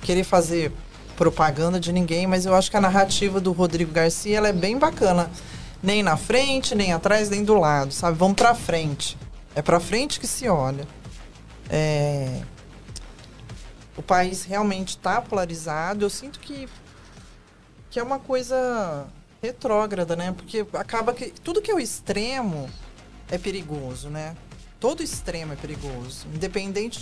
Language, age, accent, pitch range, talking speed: Portuguese, 20-39, Brazilian, 160-205 Hz, 150 wpm